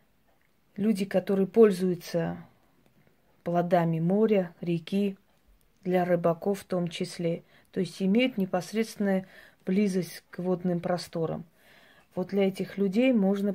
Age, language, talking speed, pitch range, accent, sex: 30-49, Russian, 105 wpm, 180-200 Hz, native, female